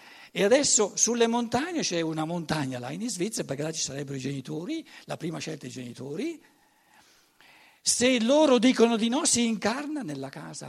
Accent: native